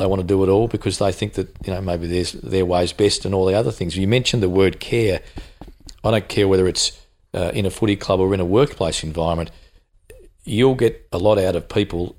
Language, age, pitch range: English, 40-59, 85-100 Hz